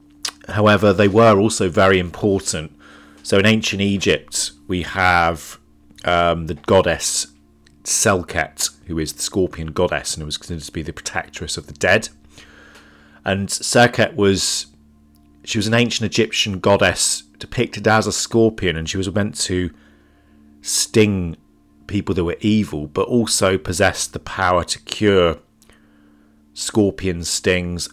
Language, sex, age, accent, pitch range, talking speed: English, male, 40-59, British, 75-100 Hz, 135 wpm